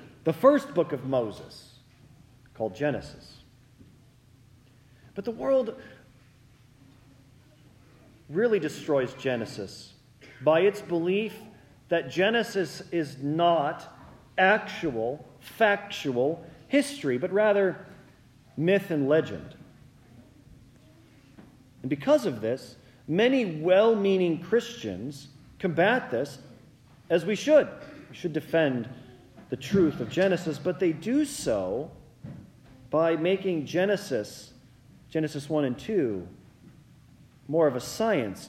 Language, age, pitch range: English, 40-59, 130-185 Hz